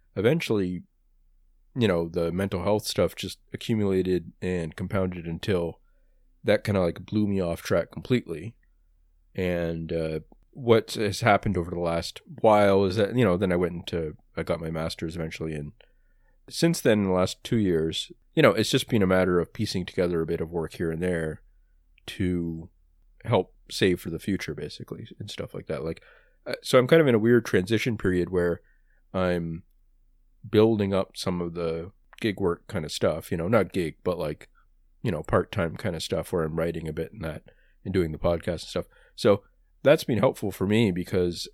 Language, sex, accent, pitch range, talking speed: English, male, American, 80-105 Hz, 190 wpm